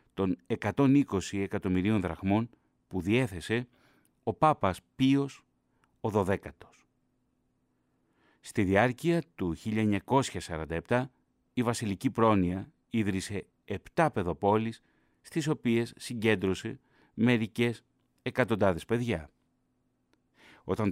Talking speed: 80 wpm